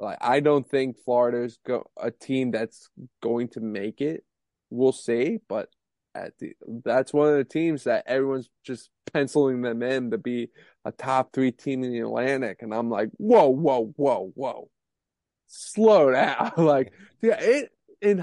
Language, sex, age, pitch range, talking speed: English, male, 20-39, 120-160 Hz, 170 wpm